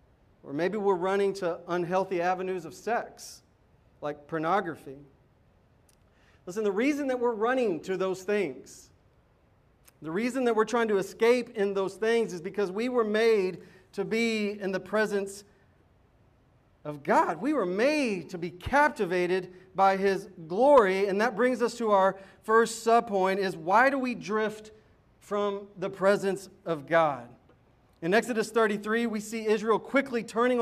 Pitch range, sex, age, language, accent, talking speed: 175-225 Hz, male, 40-59, English, American, 150 wpm